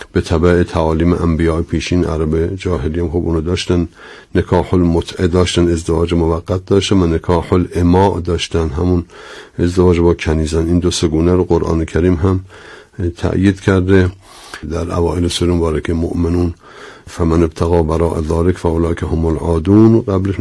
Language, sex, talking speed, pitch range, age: Persian, male, 140 wpm, 80-90 Hz, 60-79